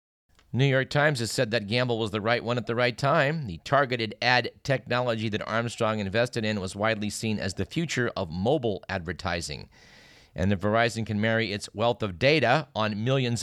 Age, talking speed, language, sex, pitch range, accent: 50-69, 190 wpm, English, male, 100-125 Hz, American